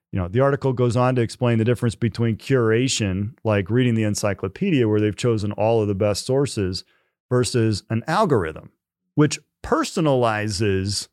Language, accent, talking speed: English, American, 155 wpm